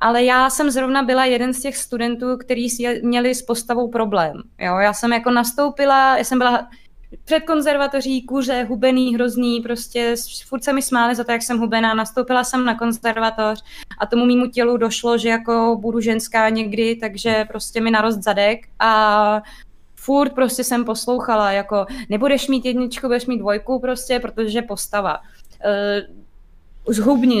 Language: Czech